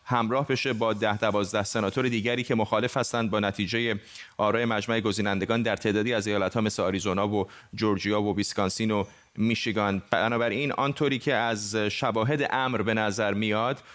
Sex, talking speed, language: male, 155 wpm, Persian